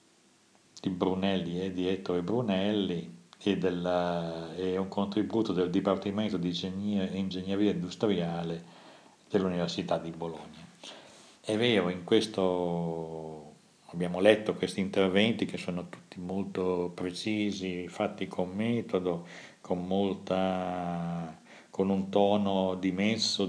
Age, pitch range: 50-69, 90-100 Hz